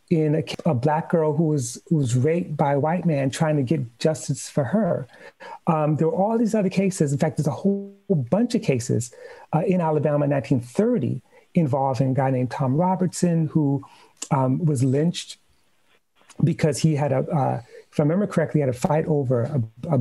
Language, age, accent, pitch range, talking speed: English, 40-59, American, 140-185 Hz, 195 wpm